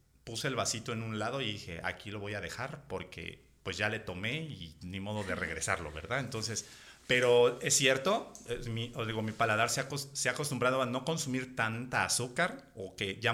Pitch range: 105-135 Hz